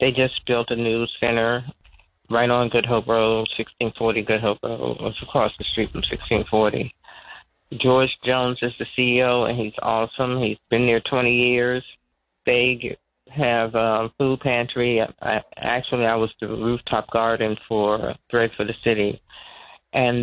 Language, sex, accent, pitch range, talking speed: English, male, American, 115-130 Hz, 155 wpm